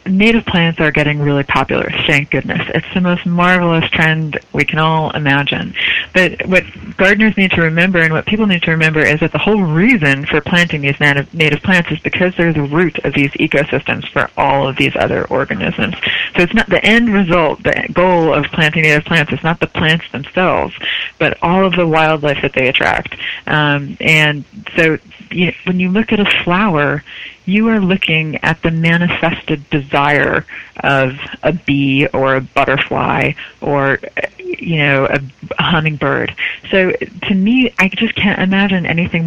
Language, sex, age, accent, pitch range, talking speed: English, female, 30-49, American, 150-180 Hz, 175 wpm